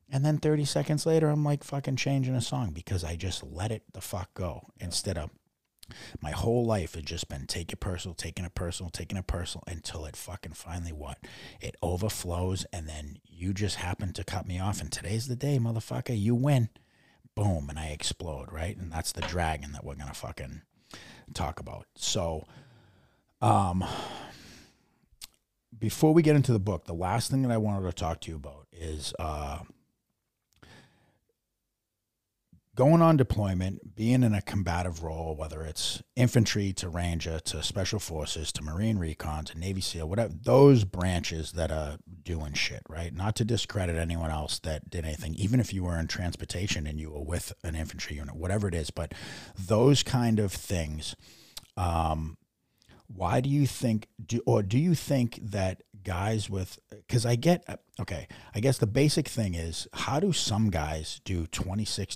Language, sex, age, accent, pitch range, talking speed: English, male, 30-49, American, 80-115 Hz, 180 wpm